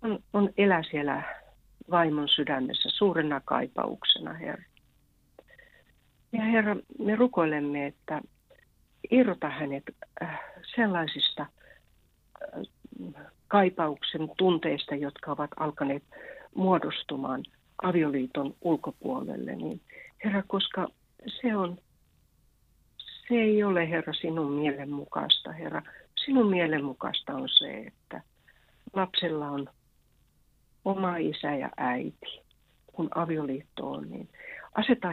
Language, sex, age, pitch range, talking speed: Finnish, female, 60-79, 145-200 Hz, 90 wpm